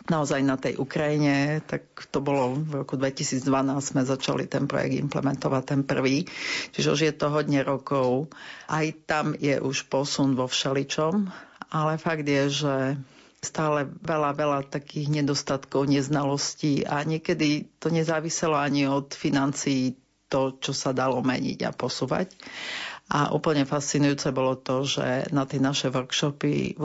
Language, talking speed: Slovak, 145 wpm